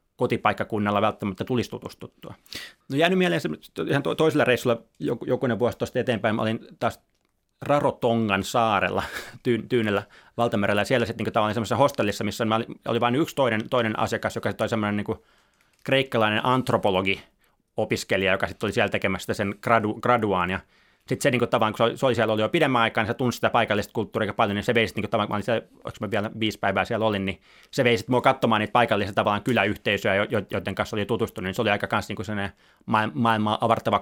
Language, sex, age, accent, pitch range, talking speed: Finnish, male, 30-49, native, 100-120 Hz, 160 wpm